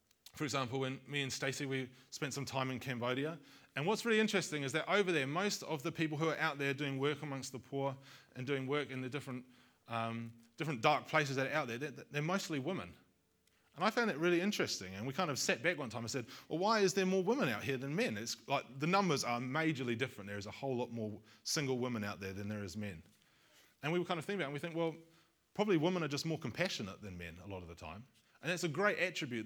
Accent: Australian